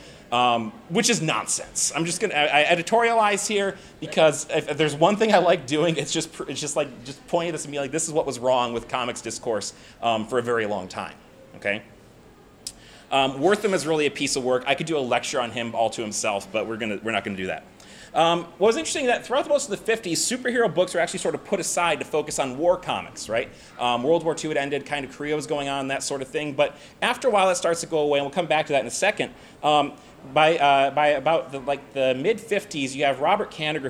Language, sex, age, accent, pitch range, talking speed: English, male, 30-49, American, 125-170 Hz, 260 wpm